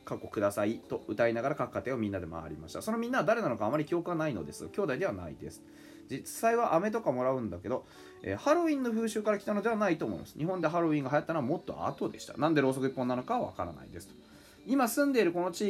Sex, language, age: male, Japanese, 20-39